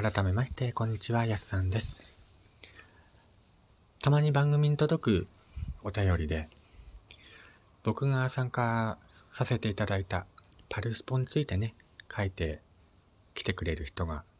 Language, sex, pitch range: Japanese, male, 85-110 Hz